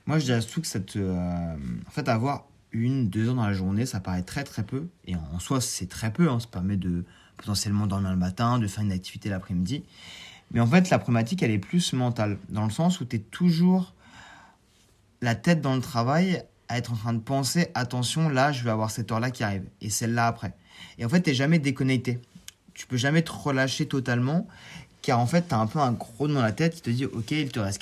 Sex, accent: male, French